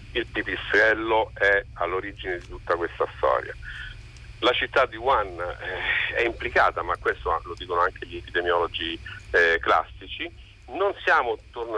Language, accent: Italian, native